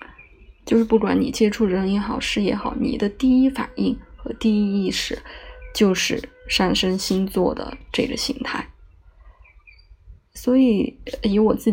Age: 20-39